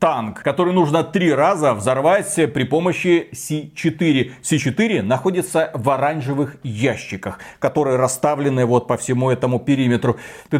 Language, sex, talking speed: Russian, male, 125 wpm